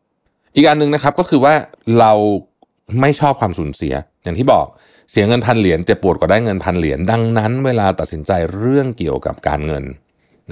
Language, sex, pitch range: Thai, male, 85-125 Hz